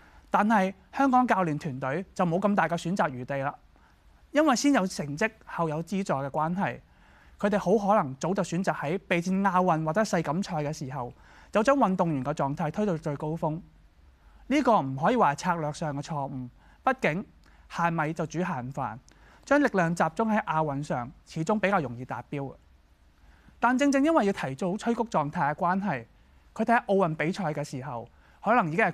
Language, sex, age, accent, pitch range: Chinese, male, 20-39, native, 145-205 Hz